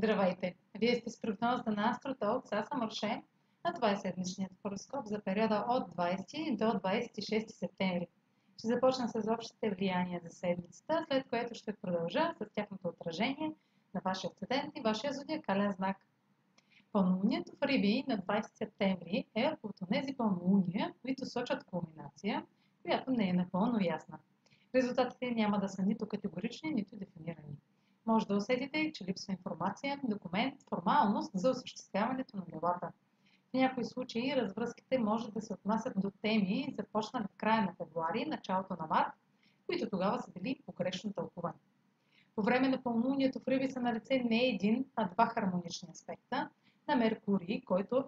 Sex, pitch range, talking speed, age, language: female, 190-240 Hz, 145 wpm, 30-49, Bulgarian